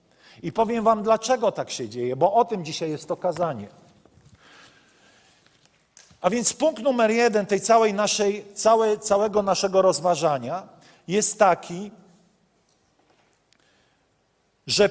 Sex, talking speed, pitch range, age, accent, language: male, 115 wpm, 165-225 Hz, 50-69, native, Polish